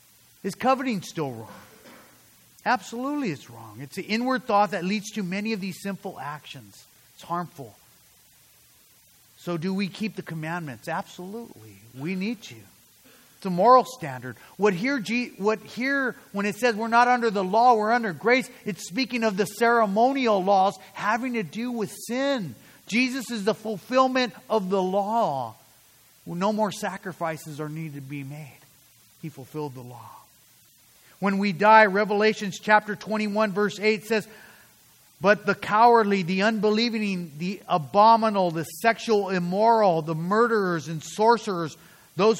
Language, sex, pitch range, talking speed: English, male, 155-215 Hz, 145 wpm